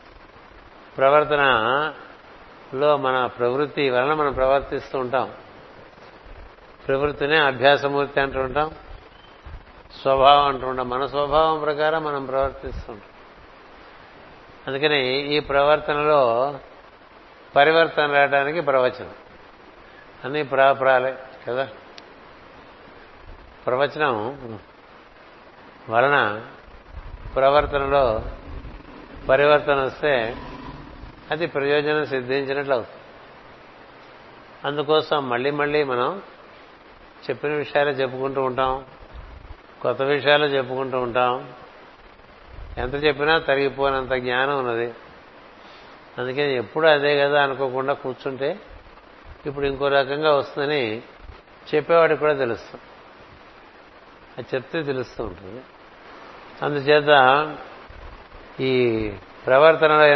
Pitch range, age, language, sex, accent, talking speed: 130-150 Hz, 60-79, Telugu, male, native, 75 wpm